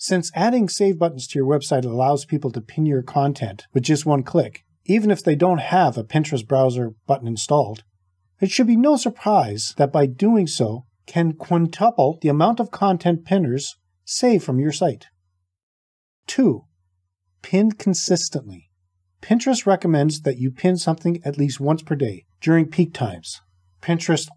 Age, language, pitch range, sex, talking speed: 40-59, English, 110-175 Hz, male, 160 wpm